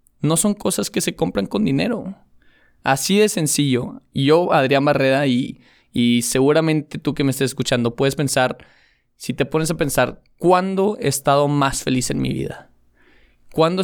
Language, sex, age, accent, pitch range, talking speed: Spanish, male, 20-39, Mexican, 125-150 Hz, 165 wpm